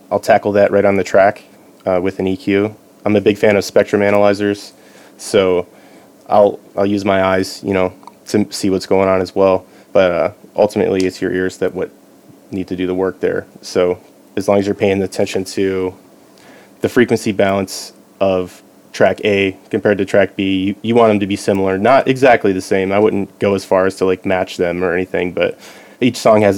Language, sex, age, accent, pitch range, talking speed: English, male, 20-39, American, 95-100 Hz, 210 wpm